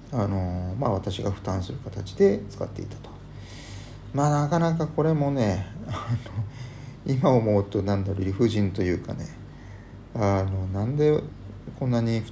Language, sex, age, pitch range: Japanese, male, 40-59, 100-135 Hz